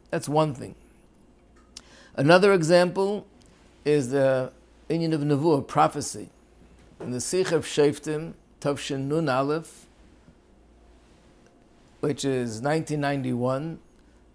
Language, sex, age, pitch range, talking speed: English, male, 50-69, 130-165 Hz, 90 wpm